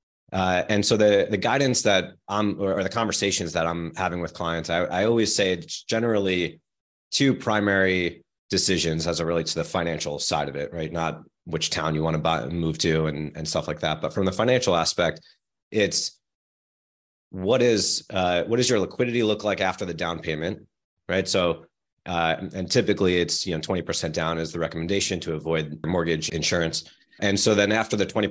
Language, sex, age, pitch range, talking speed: English, male, 30-49, 85-100 Hz, 195 wpm